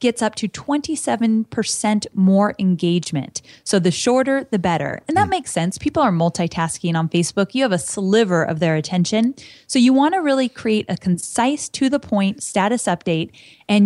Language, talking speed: English, 170 wpm